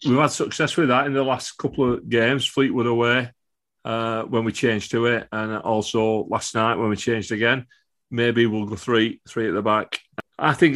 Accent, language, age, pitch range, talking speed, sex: British, English, 40-59, 115-145 Hz, 205 wpm, male